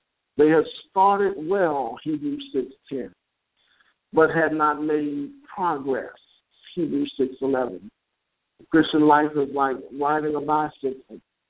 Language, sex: English, male